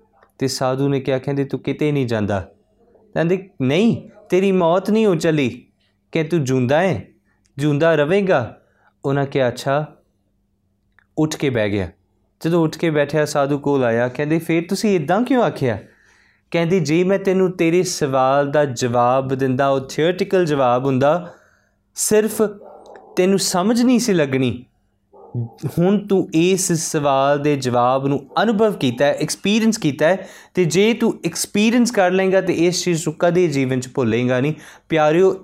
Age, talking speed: 20-39, 150 wpm